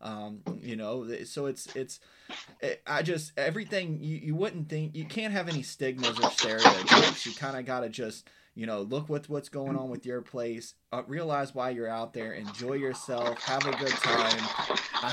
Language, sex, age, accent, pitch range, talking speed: English, male, 20-39, American, 110-135 Hz, 200 wpm